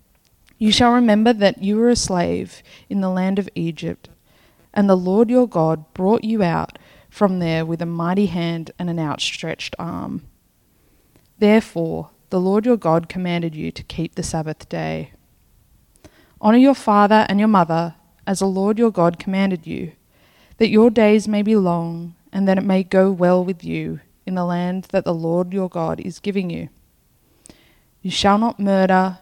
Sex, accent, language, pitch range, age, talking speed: female, Australian, English, 170-205 Hz, 20-39, 175 wpm